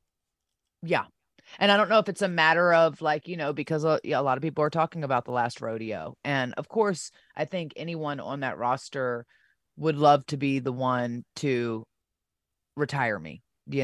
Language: English